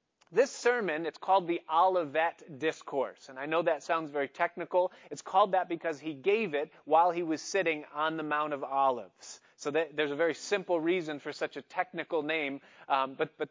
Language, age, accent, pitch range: English, 30-49, American, 150-195 Hz